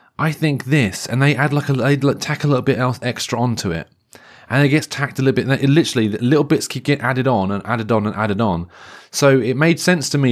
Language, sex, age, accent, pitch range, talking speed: English, male, 30-49, British, 100-130 Hz, 265 wpm